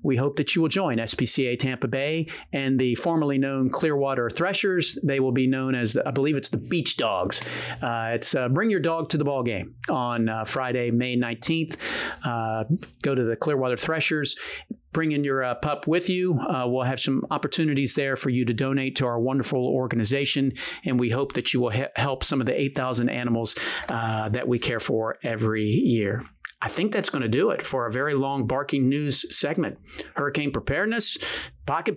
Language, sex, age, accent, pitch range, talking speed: English, male, 40-59, American, 125-165 Hz, 195 wpm